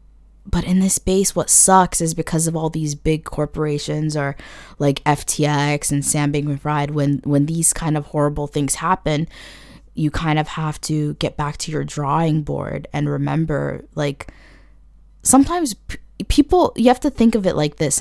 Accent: American